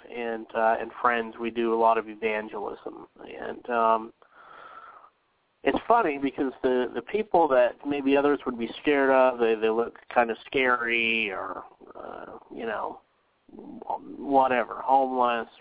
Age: 30-49